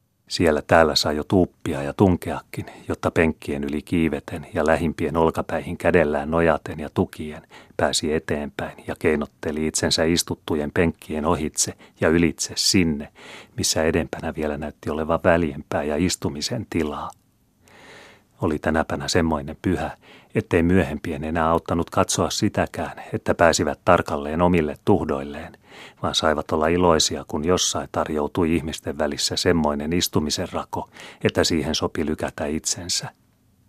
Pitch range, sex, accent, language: 75-85 Hz, male, native, Finnish